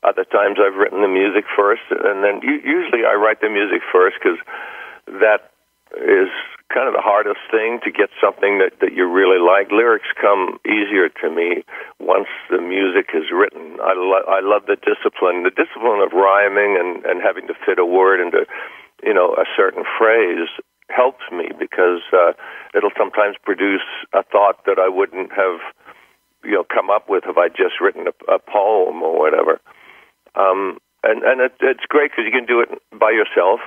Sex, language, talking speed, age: male, English, 185 wpm, 60-79